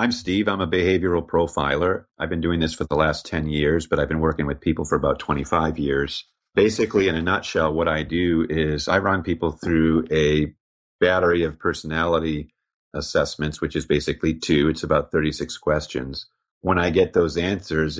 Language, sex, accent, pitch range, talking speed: English, male, American, 80-90 Hz, 185 wpm